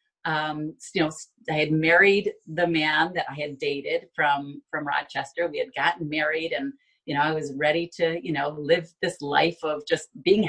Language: English